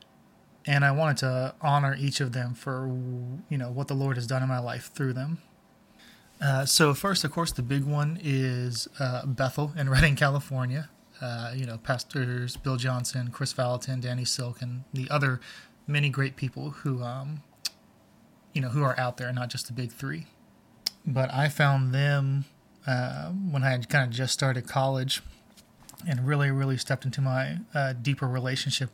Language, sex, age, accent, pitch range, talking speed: English, male, 20-39, American, 125-145 Hz, 180 wpm